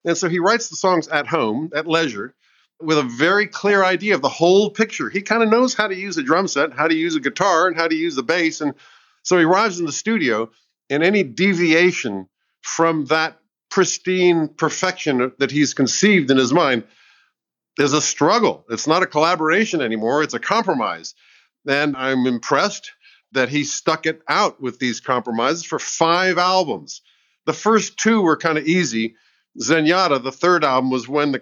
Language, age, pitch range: English, 50-69, 135-180 Hz